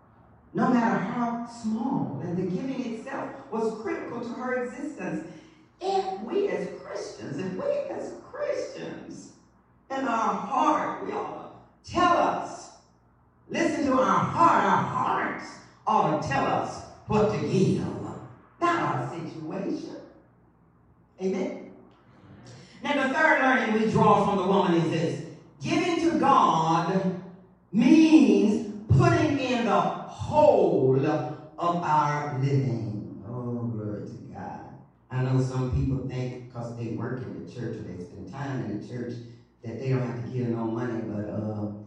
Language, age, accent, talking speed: English, 40-59, American, 145 wpm